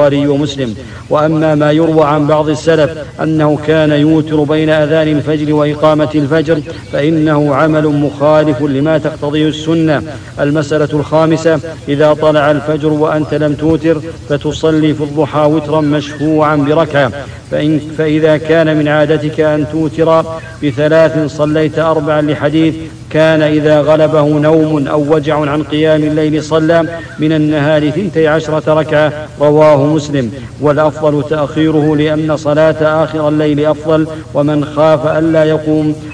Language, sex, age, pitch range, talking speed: English, male, 50-69, 150-155 Hz, 120 wpm